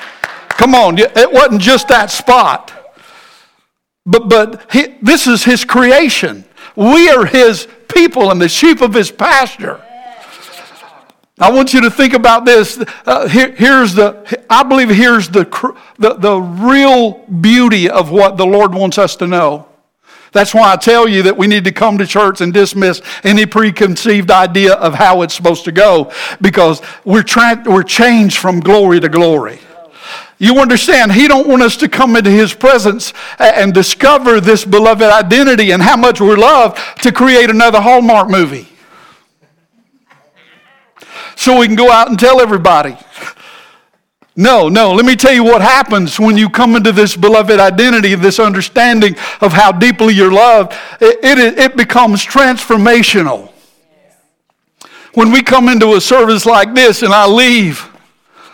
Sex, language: male, English